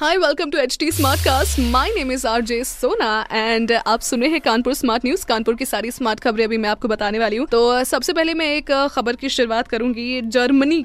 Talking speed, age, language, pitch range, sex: 220 wpm, 20-39, Hindi, 220-280 Hz, female